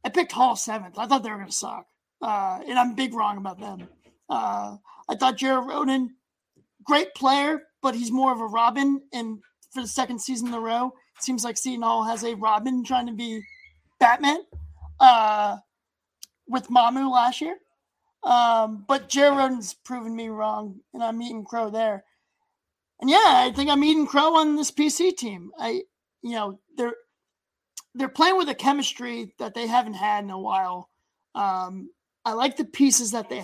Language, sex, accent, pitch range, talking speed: English, male, American, 210-270 Hz, 180 wpm